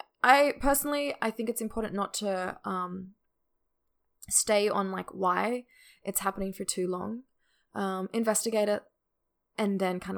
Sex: female